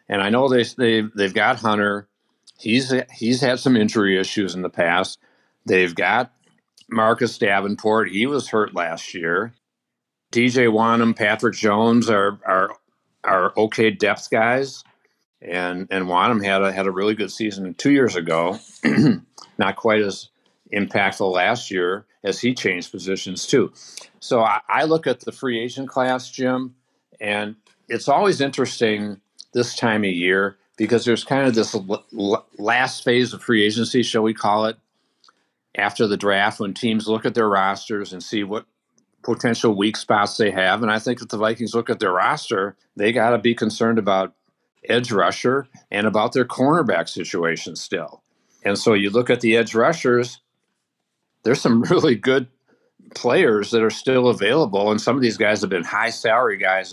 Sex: male